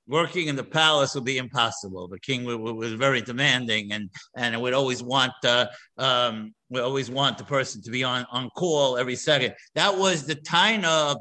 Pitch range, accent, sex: 125-155 Hz, American, male